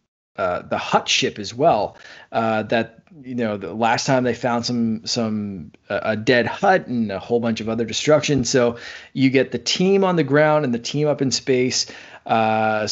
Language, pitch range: English, 115-140 Hz